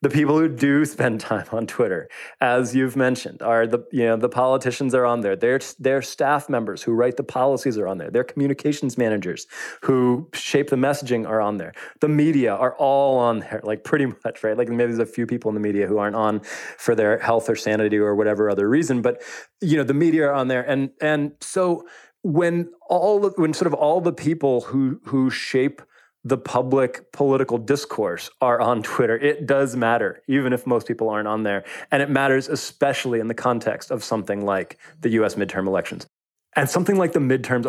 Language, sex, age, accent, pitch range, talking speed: English, male, 20-39, American, 115-145 Hz, 210 wpm